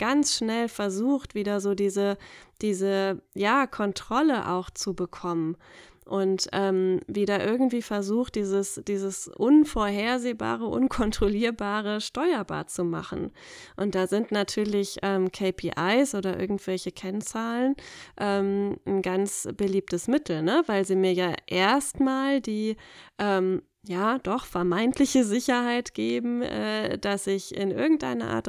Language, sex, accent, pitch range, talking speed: German, female, German, 185-215 Hz, 120 wpm